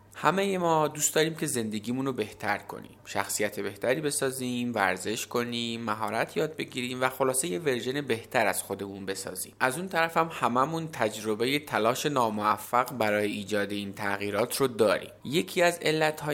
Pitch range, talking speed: 105-140 Hz, 155 wpm